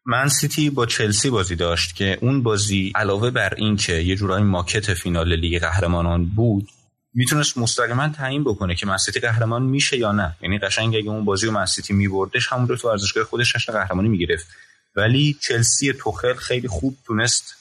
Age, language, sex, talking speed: 30-49, Persian, male, 180 wpm